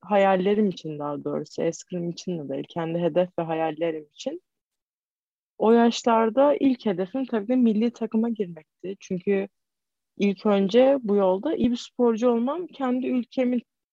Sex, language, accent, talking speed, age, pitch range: female, Turkish, native, 140 wpm, 30-49, 170-250 Hz